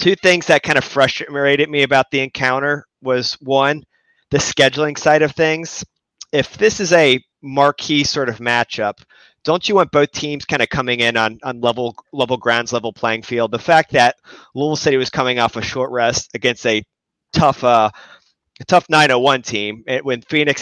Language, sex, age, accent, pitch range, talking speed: English, male, 30-49, American, 115-140 Hz, 185 wpm